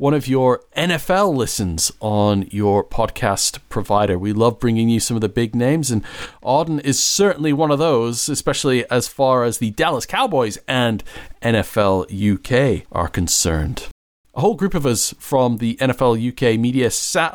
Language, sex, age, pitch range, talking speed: English, male, 40-59, 105-140 Hz, 165 wpm